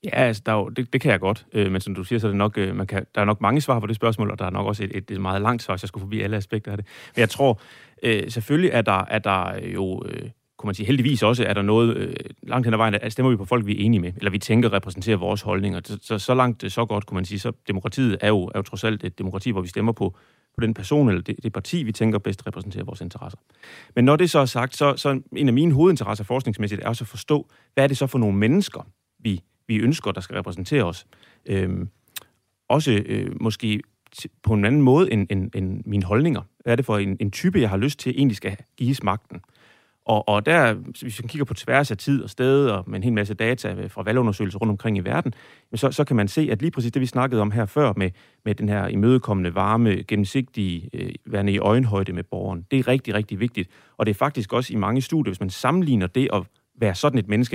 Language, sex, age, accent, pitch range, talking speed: Danish, male, 30-49, native, 100-125 Hz, 260 wpm